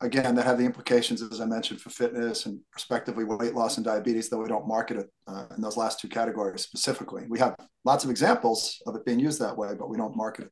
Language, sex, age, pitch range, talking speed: English, male, 40-59, 125-155 Hz, 250 wpm